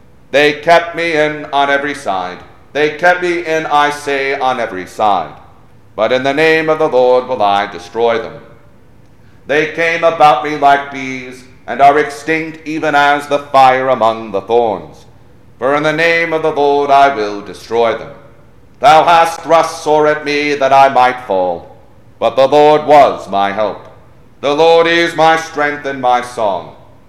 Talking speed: 175 wpm